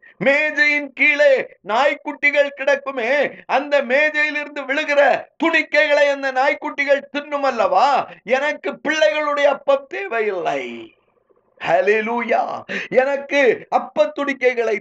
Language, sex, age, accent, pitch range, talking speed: Tamil, male, 50-69, native, 250-295 Hz, 70 wpm